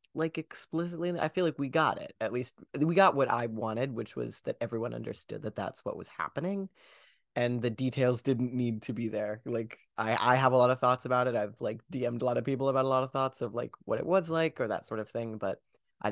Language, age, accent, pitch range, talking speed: English, 30-49, American, 110-140 Hz, 255 wpm